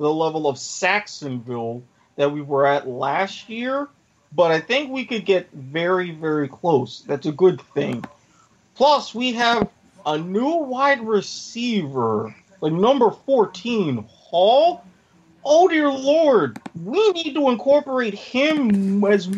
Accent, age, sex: American, 30-49, male